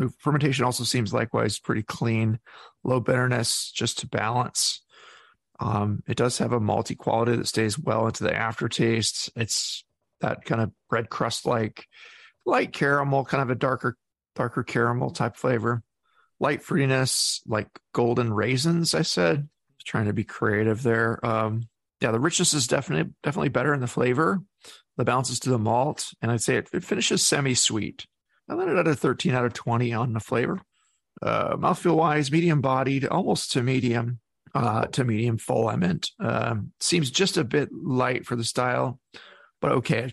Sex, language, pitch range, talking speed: male, English, 115-140 Hz, 175 wpm